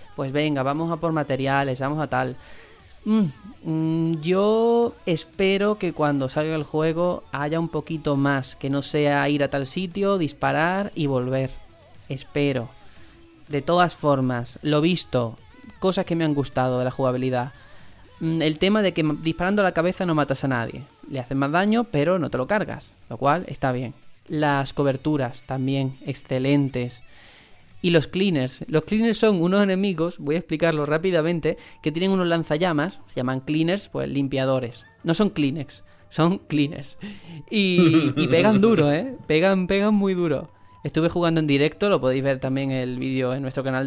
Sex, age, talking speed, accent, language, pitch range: male, 20-39, 170 wpm, Spanish, Spanish, 135-165 Hz